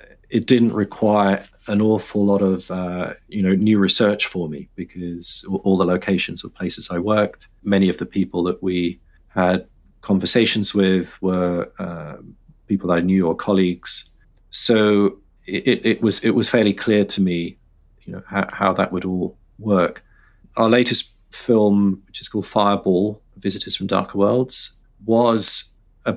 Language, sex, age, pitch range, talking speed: English, male, 40-59, 90-105 Hz, 165 wpm